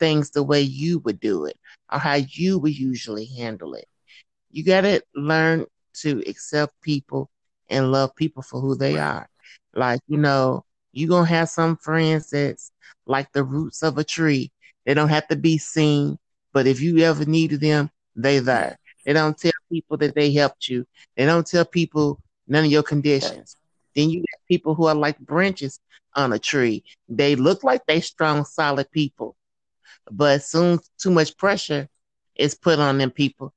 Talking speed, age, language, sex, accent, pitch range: 180 wpm, 30-49, English, male, American, 135-165 Hz